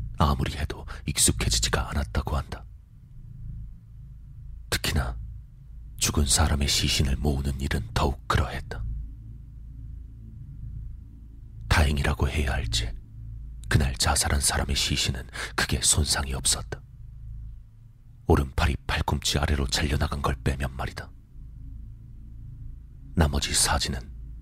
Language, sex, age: Korean, male, 40-59